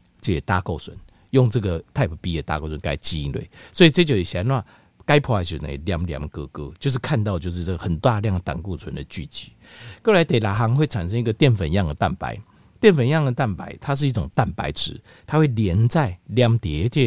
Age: 50-69